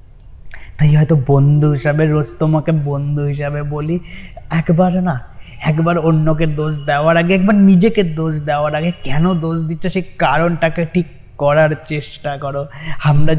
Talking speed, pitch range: 150 wpm, 125-160 Hz